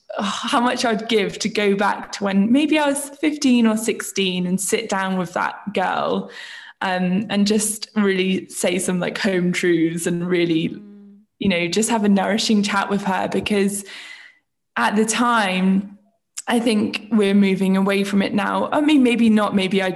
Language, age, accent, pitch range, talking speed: English, 10-29, British, 190-220 Hz, 175 wpm